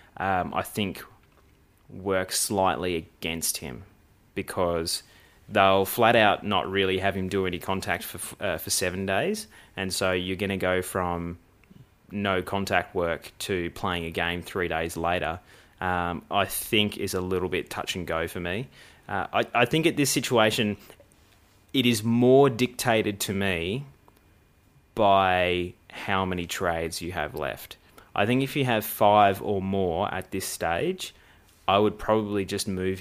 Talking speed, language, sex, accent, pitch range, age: 160 wpm, English, male, Australian, 90-100 Hz, 20-39